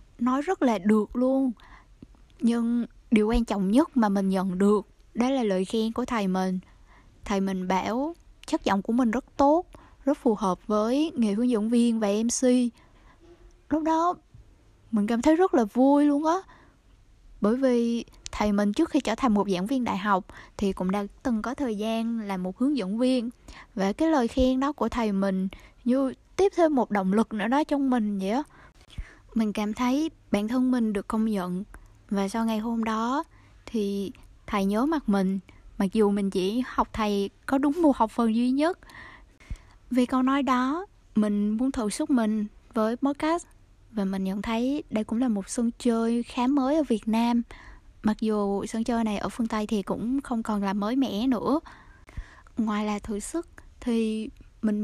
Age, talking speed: 10-29, 190 wpm